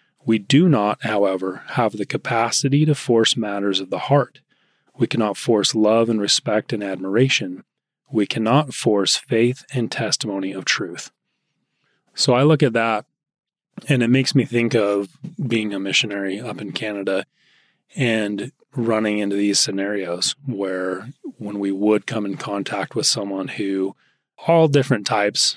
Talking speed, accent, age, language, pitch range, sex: 150 wpm, American, 30-49, English, 105-130 Hz, male